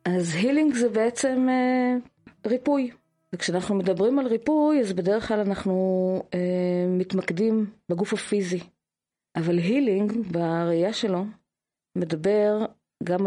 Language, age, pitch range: Hebrew, 30-49, 175-210 Hz